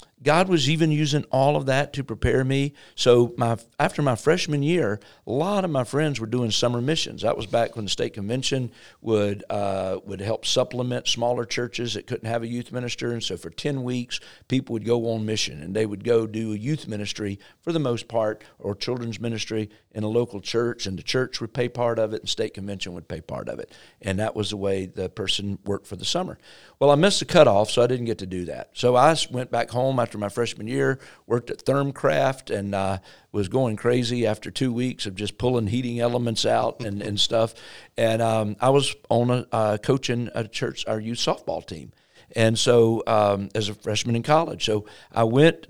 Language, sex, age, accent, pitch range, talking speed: English, male, 50-69, American, 105-130 Hz, 220 wpm